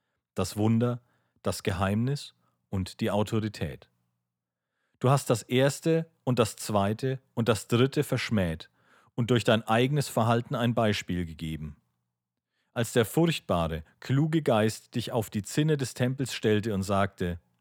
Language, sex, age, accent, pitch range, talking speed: German, male, 40-59, German, 95-125 Hz, 135 wpm